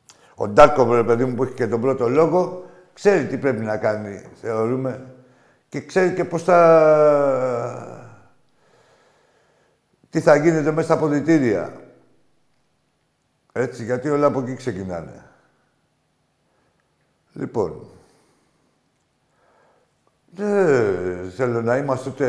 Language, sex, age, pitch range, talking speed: Greek, male, 60-79, 115-145 Hz, 105 wpm